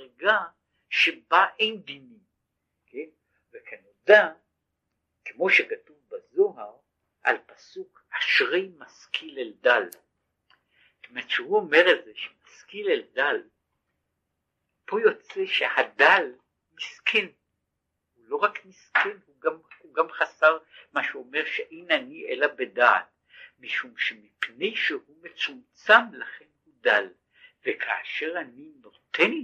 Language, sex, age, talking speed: Hebrew, male, 60-79, 105 wpm